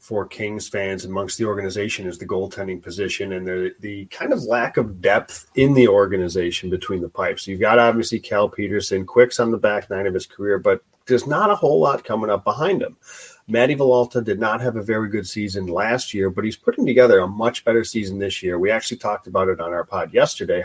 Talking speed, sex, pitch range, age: 225 wpm, male, 100-125 Hz, 30-49